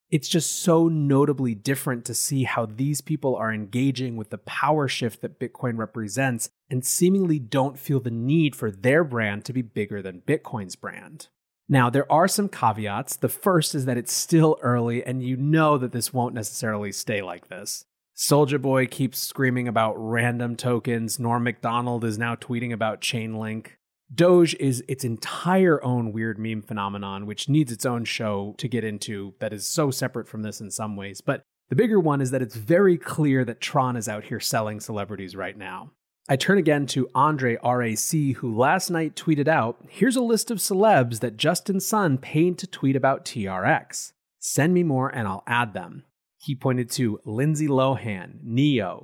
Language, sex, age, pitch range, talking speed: English, male, 30-49, 115-150 Hz, 185 wpm